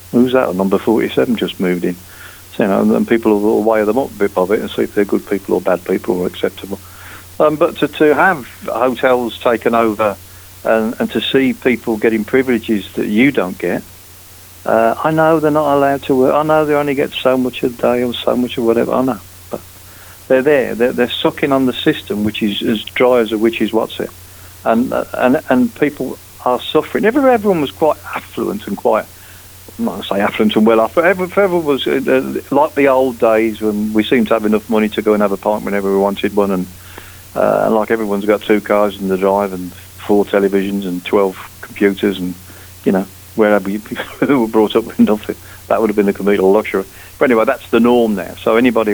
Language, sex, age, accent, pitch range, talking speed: English, male, 50-69, British, 95-125 Hz, 220 wpm